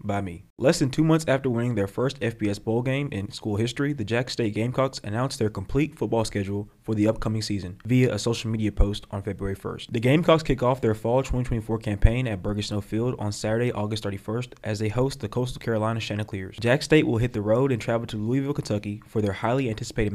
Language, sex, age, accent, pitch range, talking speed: English, male, 20-39, American, 105-125 Hz, 225 wpm